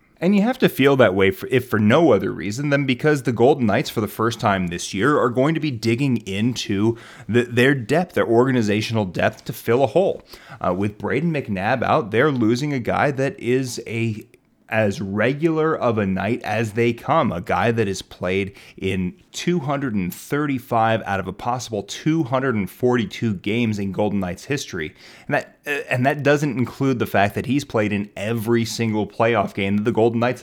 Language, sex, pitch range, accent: English, male, 100-135 Hz, American